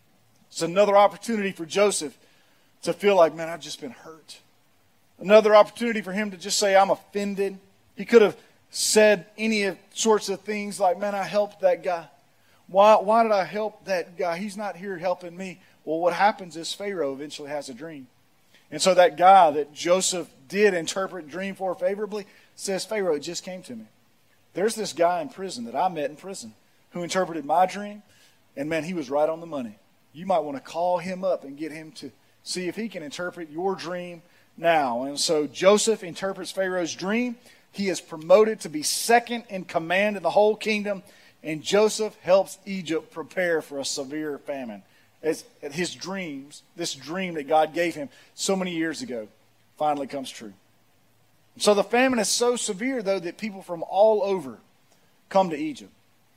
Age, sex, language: 40-59, male, English